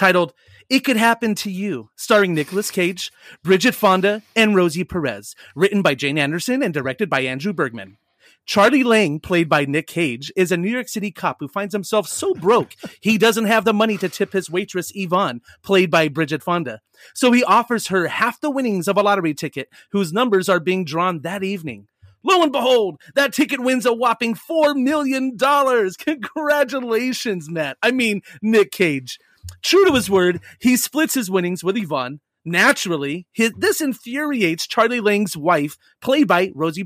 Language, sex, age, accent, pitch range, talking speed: English, male, 30-49, American, 155-230 Hz, 175 wpm